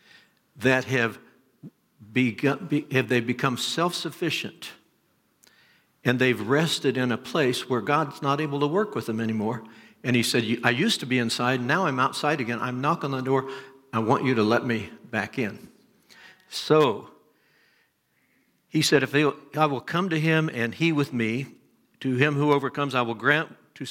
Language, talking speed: English, 170 wpm